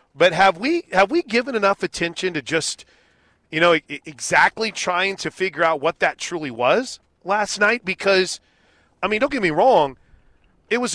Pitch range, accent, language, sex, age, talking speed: 160-205 Hz, American, English, male, 40-59, 175 wpm